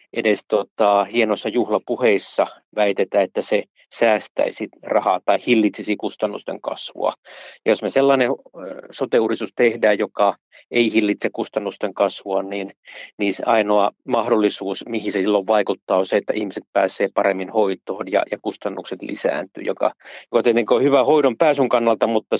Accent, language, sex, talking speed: native, Finnish, male, 140 wpm